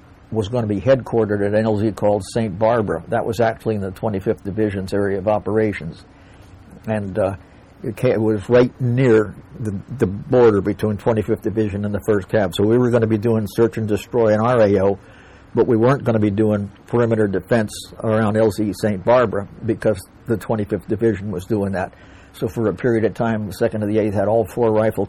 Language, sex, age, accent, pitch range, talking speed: English, male, 60-79, American, 100-115 Hz, 200 wpm